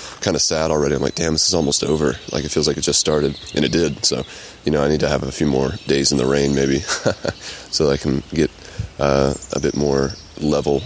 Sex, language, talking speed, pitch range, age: male, English, 250 wpm, 70-80 Hz, 20-39